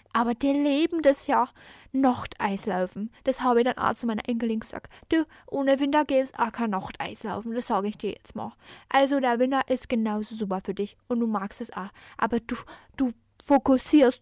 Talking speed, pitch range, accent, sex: 195 wpm, 220-270 Hz, German, female